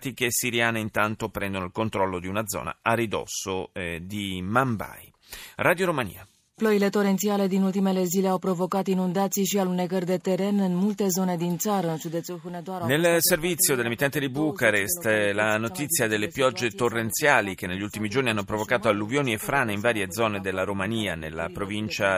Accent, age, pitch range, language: native, 30-49, 100-135 Hz, Italian